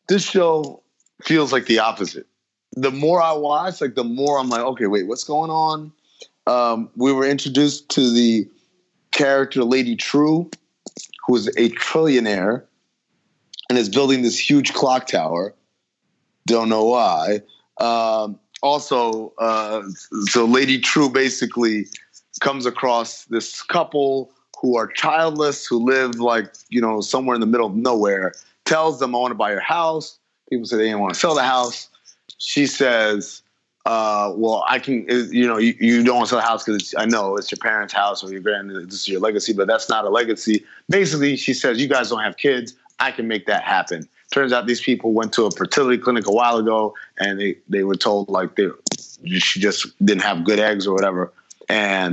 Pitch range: 110-140 Hz